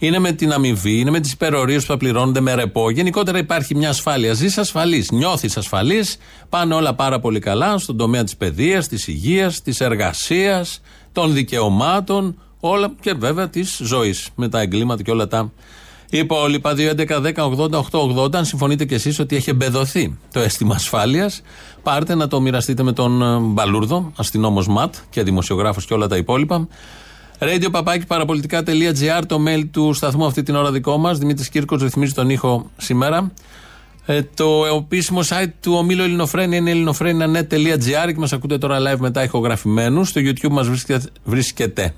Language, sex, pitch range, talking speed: Greek, male, 120-165 Hz, 160 wpm